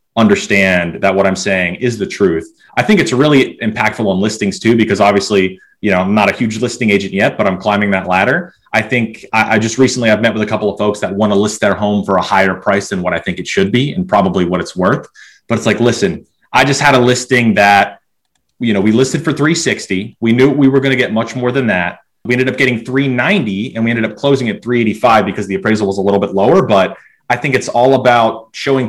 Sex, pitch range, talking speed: male, 100-130 Hz, 250 wpm